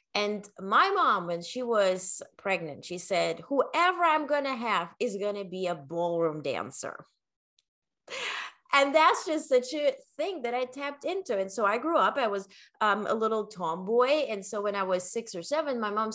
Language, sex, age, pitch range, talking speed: English, female, 20-39, 180-260 Hz, 195 wpm